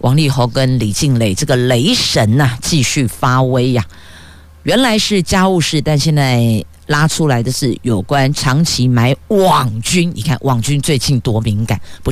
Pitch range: 120-160 Hz